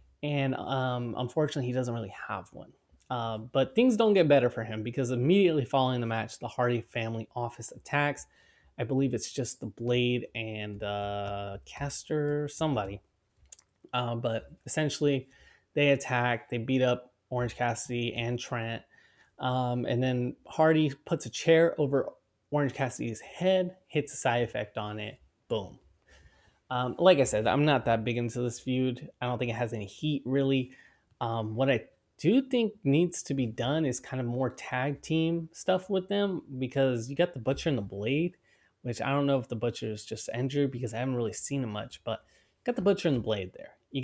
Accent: American